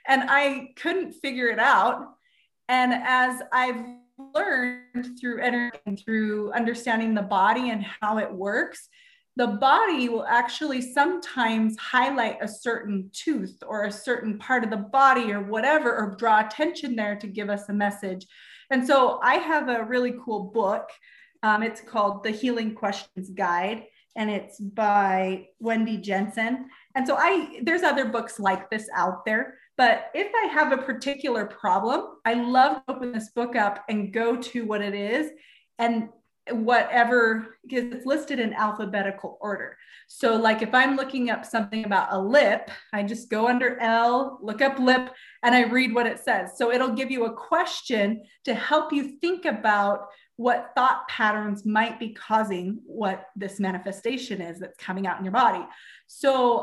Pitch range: 210-255 Hz